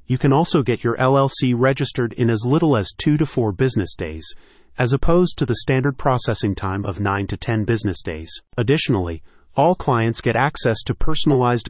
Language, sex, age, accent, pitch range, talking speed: English, male, 30-49, American, 110-135 Hz, 185 wpm